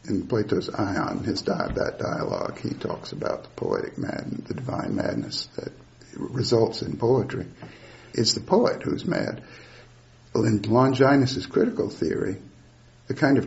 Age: 60-79